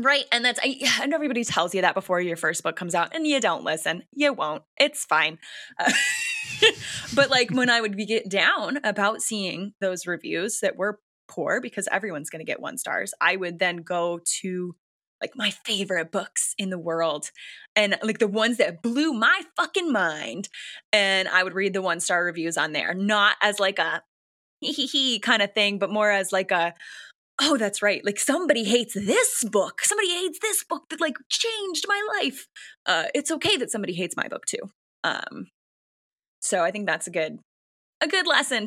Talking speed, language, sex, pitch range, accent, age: 195 wpm, English, female, 185-275 Hz, American, 10-29